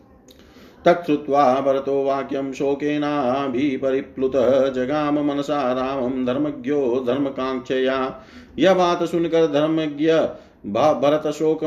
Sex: male